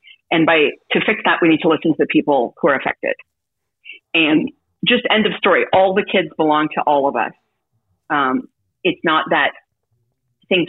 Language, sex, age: English, female, 40-59